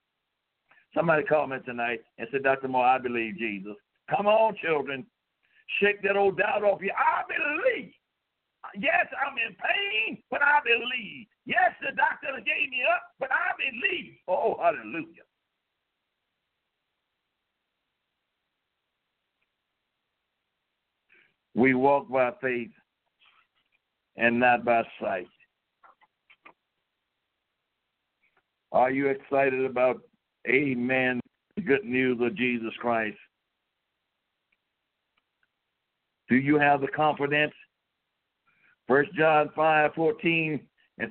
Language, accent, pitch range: English, American, 135-205 Hz